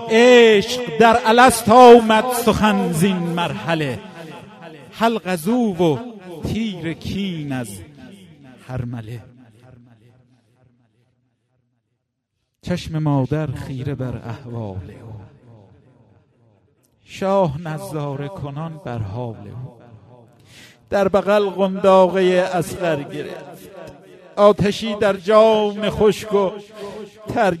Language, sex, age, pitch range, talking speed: Persian, male, 50-69, 145-240 Hz, 80 wpm